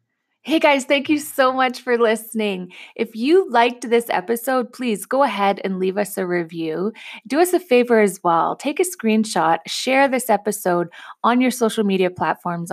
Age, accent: 20-39, American